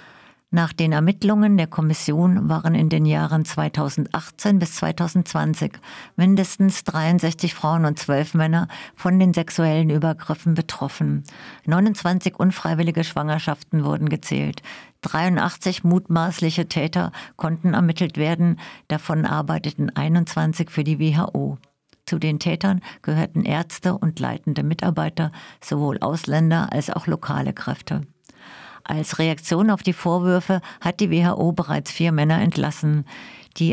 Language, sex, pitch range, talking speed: German, female, 155-180 Hz, 120 wpm